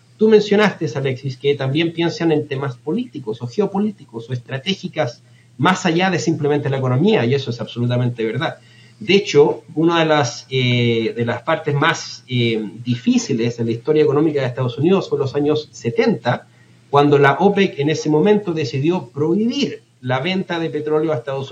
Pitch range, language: 125-165 Hz, Spanish